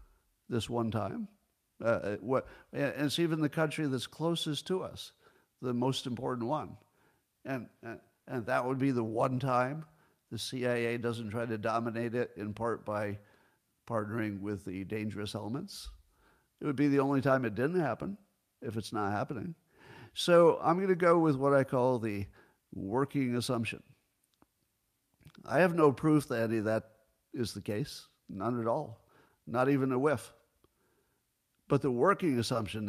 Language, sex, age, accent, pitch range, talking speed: English, male, 50-69, American, 105-145 Hz, 155 wpm